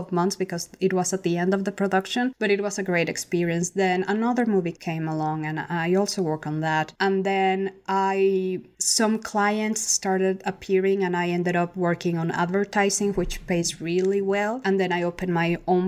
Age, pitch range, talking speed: 20-39, 175-205 Hz, 195 wpm